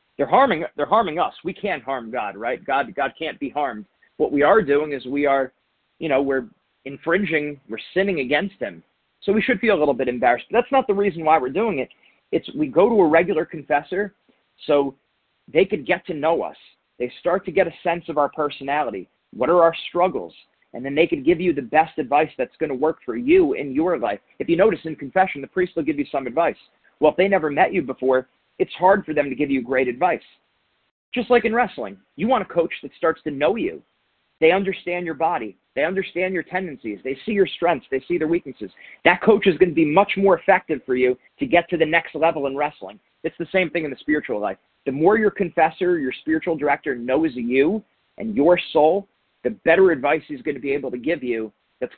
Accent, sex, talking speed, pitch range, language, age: American, male, 230 wpm, 140-190 Hz, English, 40-59